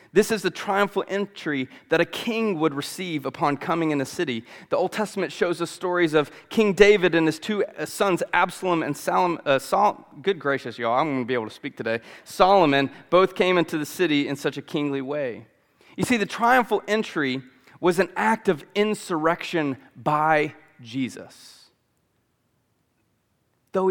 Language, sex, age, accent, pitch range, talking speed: English, male, 30-49, American, 145-190 Hz, 165 wpm